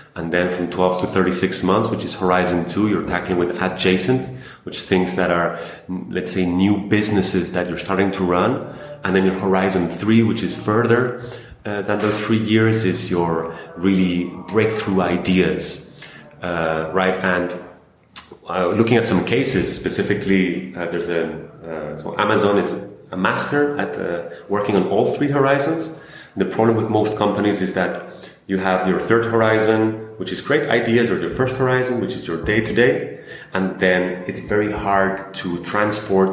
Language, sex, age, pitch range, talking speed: English, male, 30-49, 90-105 Hz, 170 wpm